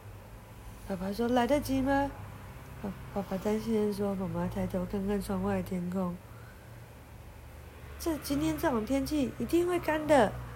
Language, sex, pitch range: Chinese, female, 190-260 Hz